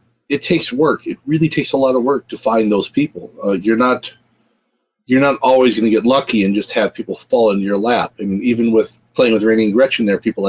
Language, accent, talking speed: English, American, 255 wpm